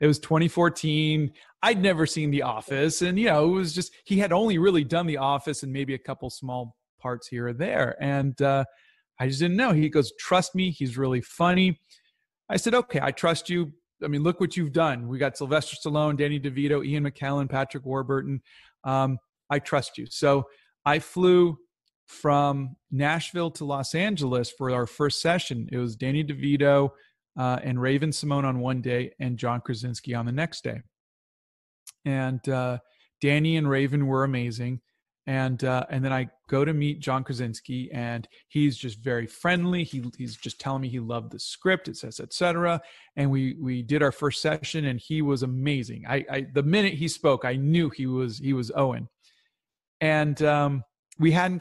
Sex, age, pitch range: male, 40-59, 130-160 Hz